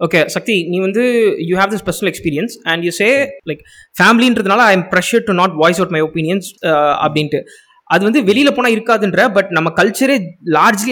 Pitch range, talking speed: 160-215 Hz, 220 wpm